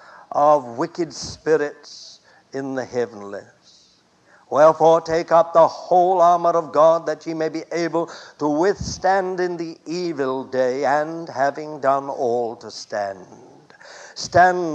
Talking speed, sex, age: 130 wpm, male, 60-79